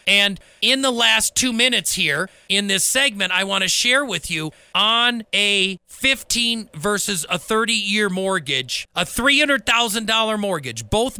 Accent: American